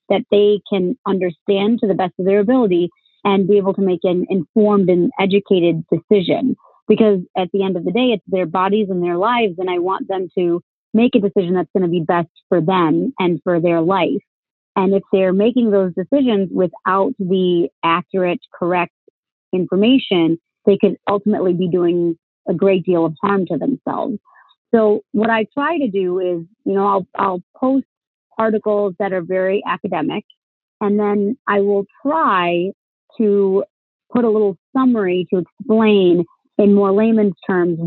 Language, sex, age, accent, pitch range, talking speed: English, female, 30-49, American, 180-215 Hz, 170 wpm